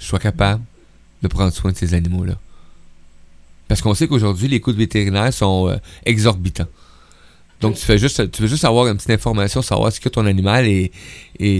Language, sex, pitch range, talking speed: French, male, 95-130 Hz, 195 wpm